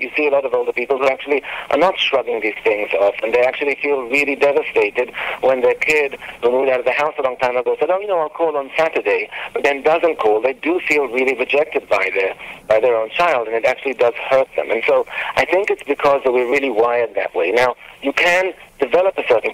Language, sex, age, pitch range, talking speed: English, male, 50-69, 125-160 Hz, 240 wpm